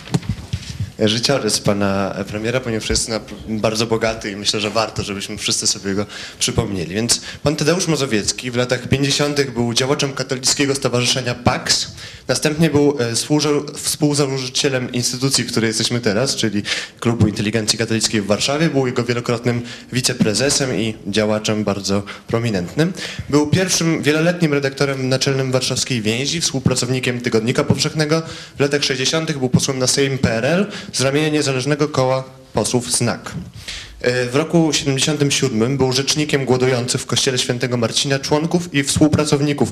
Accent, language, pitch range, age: native, Polish, 115-145 Hz, 20-39